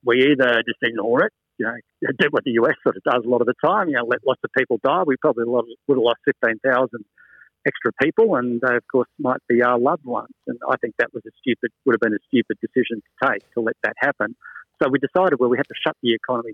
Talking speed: 260 wpm